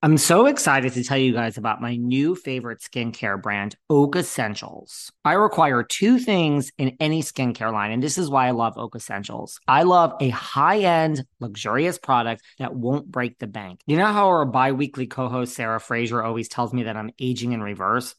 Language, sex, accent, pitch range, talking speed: English, male, American, 120-150 Hz, 190 wpm